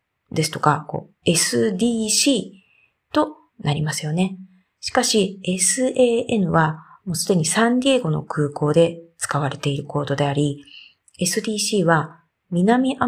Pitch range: 155-230 Hz